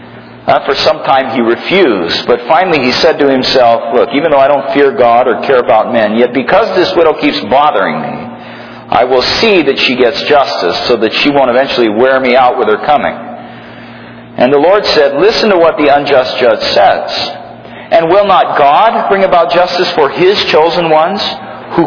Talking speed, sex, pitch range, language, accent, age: 195 wpm, male, 125-185 Hz, English, American, 50-69